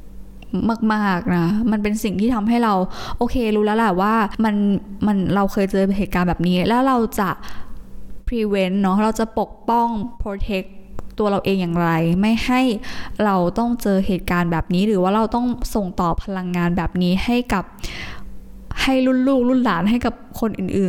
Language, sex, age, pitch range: Thai, female, 20-39, 180-220 Hz